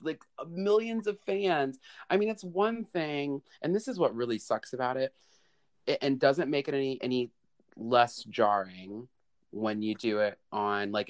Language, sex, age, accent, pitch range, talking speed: English, male, 30-49, American, 105-140 Hz, 175 wpm